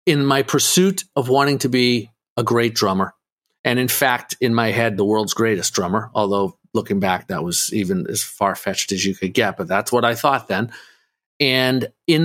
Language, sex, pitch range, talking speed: English, male, 115-155 Hz, 195 wpm